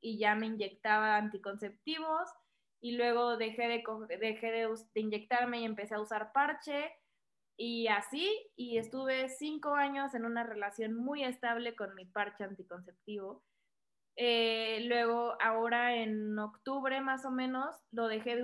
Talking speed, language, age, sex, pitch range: 145 wpm, Spanish, 20-39, female, 215-260 Hz